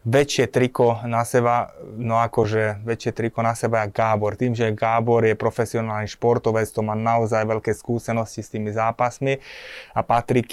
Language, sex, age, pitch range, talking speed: Slovak, male, 20-39, 110-120 Hz, 160 wpm